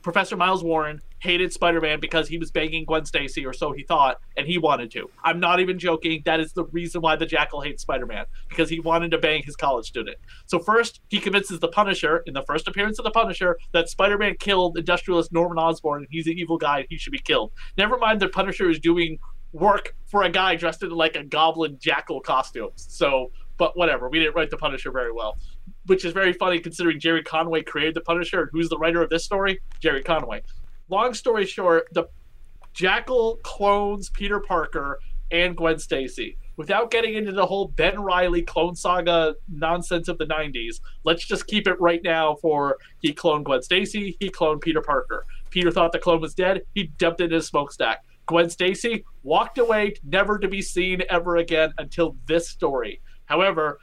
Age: 30-49